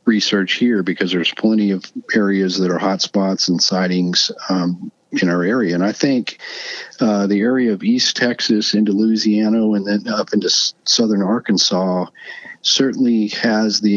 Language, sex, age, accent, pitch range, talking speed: English, male, 50-69, American, 90-105 Hz, 165 wpm